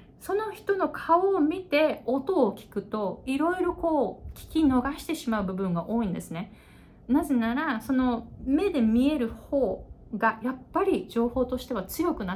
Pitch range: 200-280 Hz